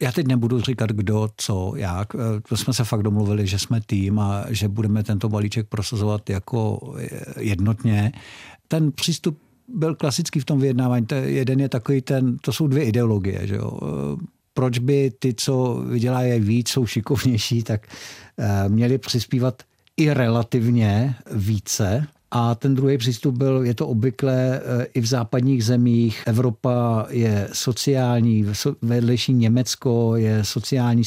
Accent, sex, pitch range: native, male, 110-130 Hz